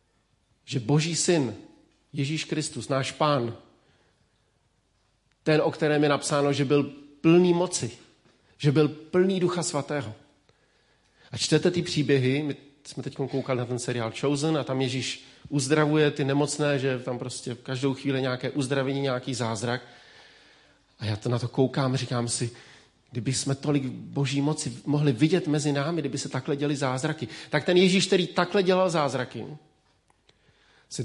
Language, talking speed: Czech, 155 wpm